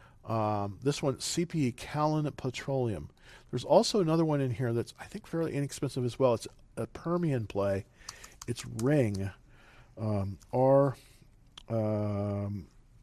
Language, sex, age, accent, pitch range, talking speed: English, male, 40-59, American, 115-150 Hz, 120 wpm